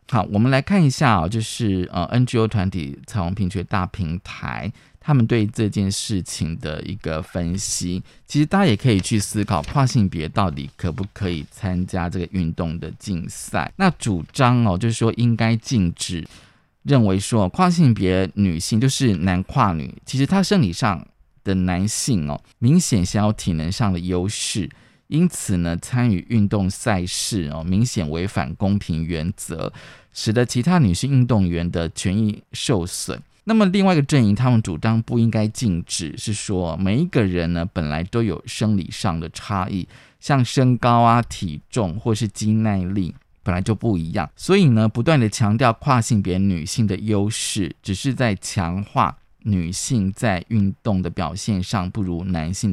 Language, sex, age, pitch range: Chinese, male, 20-39, 90-120 Hz